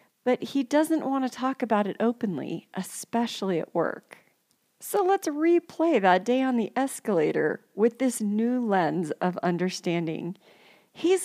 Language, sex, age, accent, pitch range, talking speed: English, female, 40-59, American, 195-285 Hz, 145 wpm